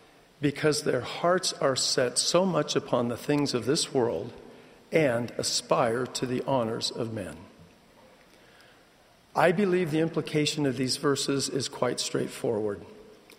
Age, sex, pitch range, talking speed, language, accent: 50-69, male, 130-155 Hz, 135 wpm, English, American